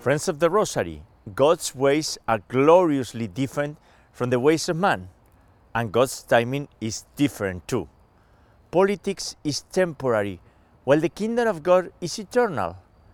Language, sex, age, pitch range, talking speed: English, male, 50-69, 110-170 Hz, 135 wpm